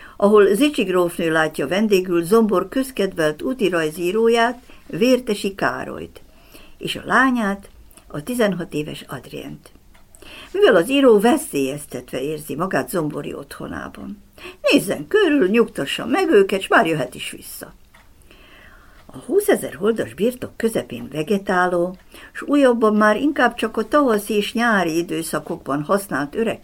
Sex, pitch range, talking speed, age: female, 155-245 Hz, 115 wpm, 60-79